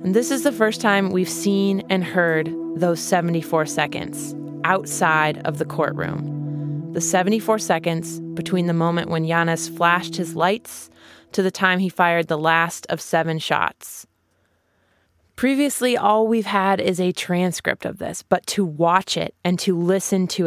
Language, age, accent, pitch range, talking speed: English, 20-39, American, 160-190 Hz, 160 wpm